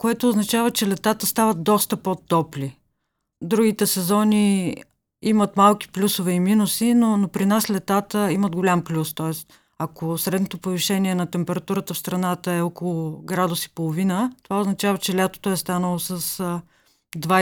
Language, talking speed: English, 145 wpm